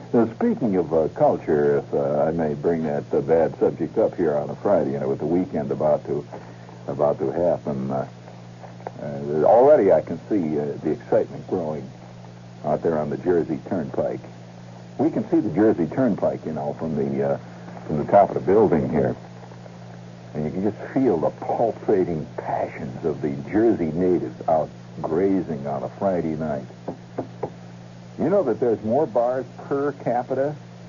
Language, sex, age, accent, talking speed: English, male, 60-79, American, 175 wpm